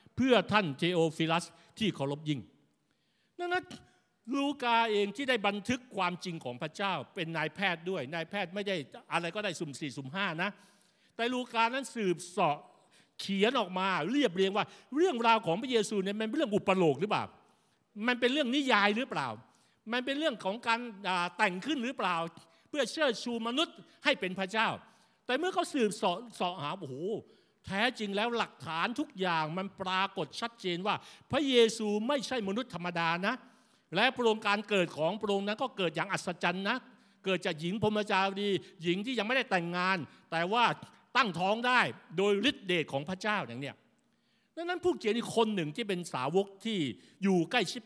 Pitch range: 175-235 Hz